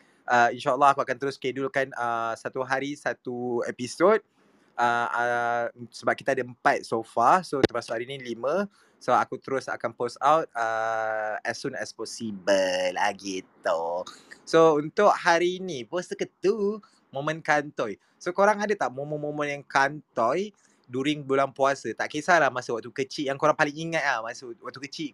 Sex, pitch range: male, 125-155 Hz